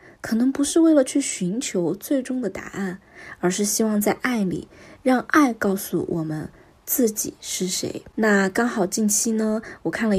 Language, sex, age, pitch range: Chinese, female, 20-39, 175-230 Hz